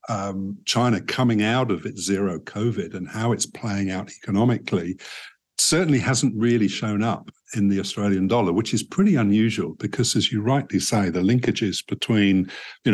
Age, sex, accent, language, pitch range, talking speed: 50-69, male, British, English, 95-110 Hz, 165 wpm